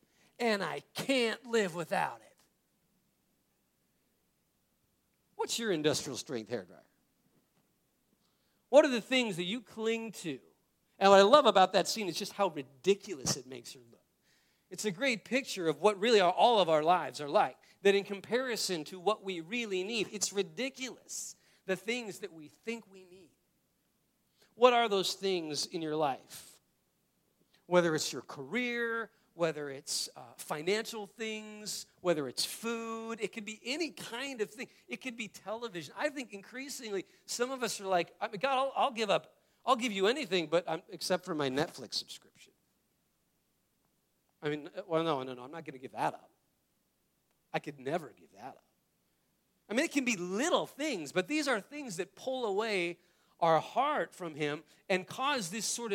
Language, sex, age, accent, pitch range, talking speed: English, male, 40-59, American, 175-235 Hz, 175 wpm